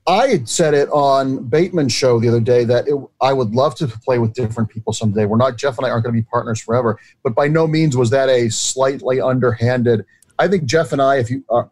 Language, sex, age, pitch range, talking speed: English, male, 40-59, 115-135 Hz, 250 wpm